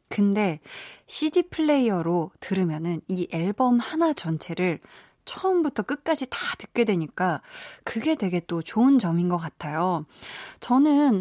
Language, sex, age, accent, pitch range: Korean, female, 20-39, native, 175-260 Hz